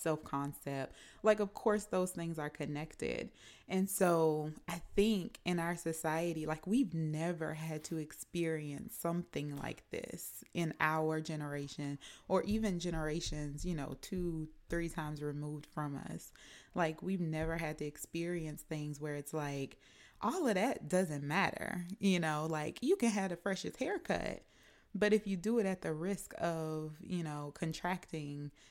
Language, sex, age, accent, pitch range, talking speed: English, female, 20-39, American, 155-185 Hz, 155 wpm